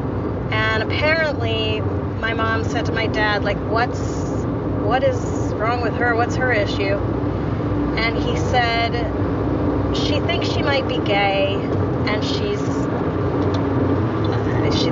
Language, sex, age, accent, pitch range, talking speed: English, female, 30-49, American, 100-130 Hz, 120 wpm